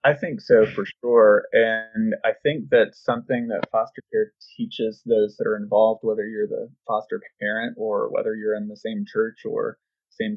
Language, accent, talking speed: English, American, 185 wpm